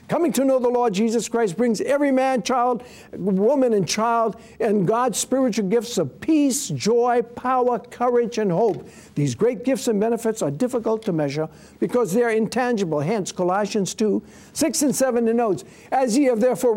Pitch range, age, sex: 195-245 Hz, 60-79, male